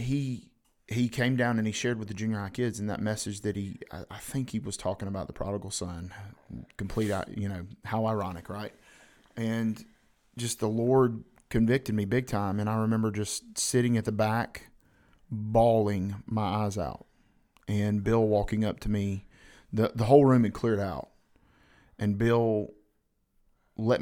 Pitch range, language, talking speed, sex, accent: 105-115 Hz, English, 175 wpm, male, American